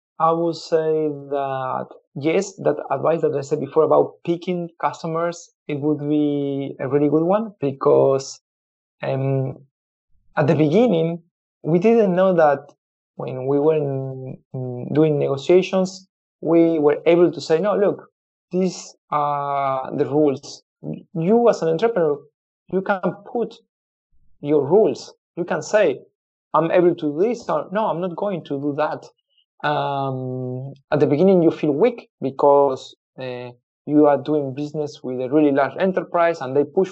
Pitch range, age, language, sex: 135-170 Hz, 30-49, English, male